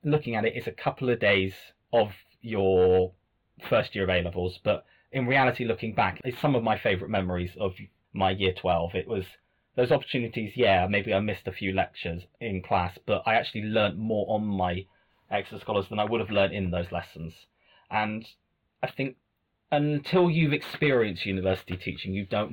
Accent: British